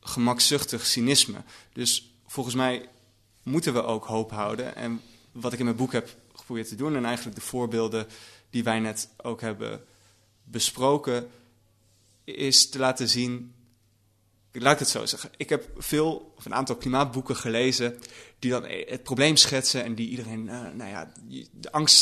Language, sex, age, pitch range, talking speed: Dutch, male, 20-39, 110-130 Hz, 160 wpm